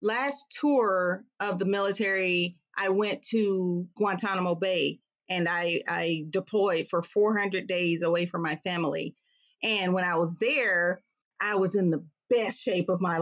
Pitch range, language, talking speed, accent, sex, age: 190-235 Hz, English, 155 wpm, American, female, 30-49